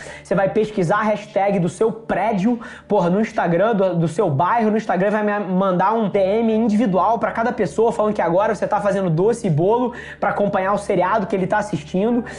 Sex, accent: male, Brazilian